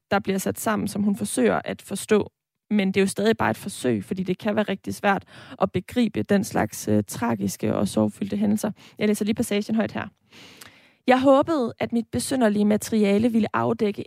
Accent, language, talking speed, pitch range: native, Danish, 190 wpm, 200-230 Hz